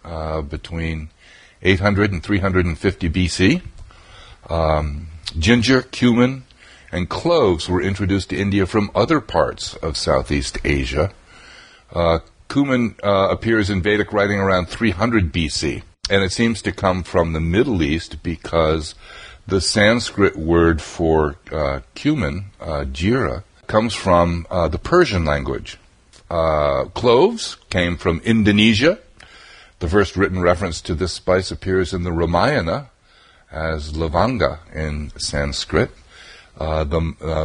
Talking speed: 125 wpm